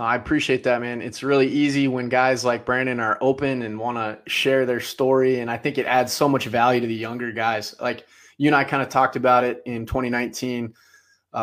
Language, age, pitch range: English, 20-39, 120-135 Hz